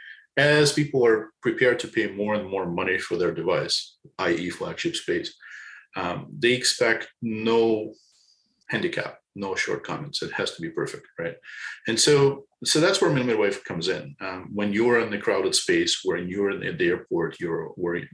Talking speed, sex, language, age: 170 wpm, male, English, 40-59